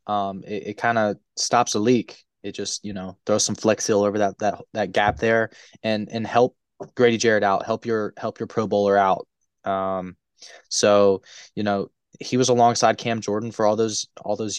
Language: English